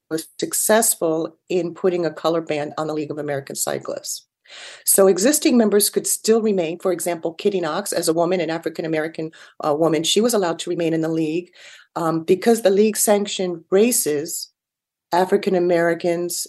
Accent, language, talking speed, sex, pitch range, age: American, English, 160 wpm, female, 160-195 Hz, 40-59